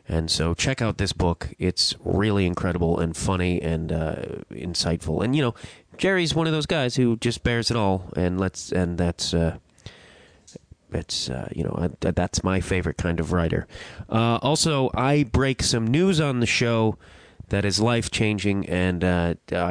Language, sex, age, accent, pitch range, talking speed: English, male, 30-49, American, 90-115 Hz, 175 wpm